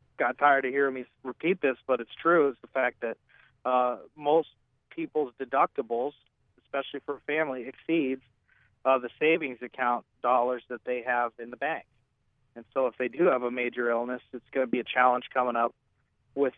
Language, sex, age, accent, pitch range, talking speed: English, male, 40-59, American, 120-140 Hz, 190 wpm